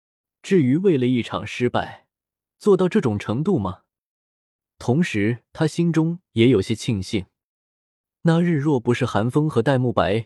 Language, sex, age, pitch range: Chinese, male, 20-39, 110-165 Hz